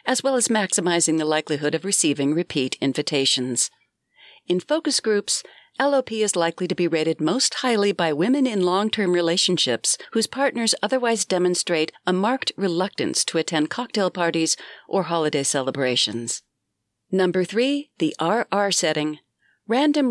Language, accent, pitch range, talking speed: English, American, 155-225 Hz, 135 wpm